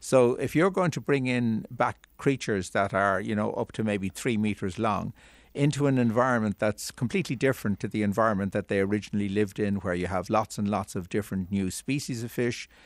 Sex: male